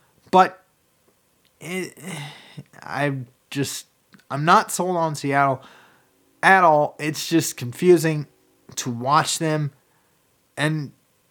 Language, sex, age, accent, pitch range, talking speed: English, male, 20-39, American, 135-180 Hz, 95 wpm